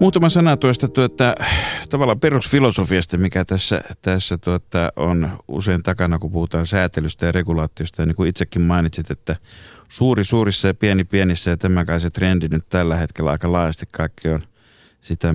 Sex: male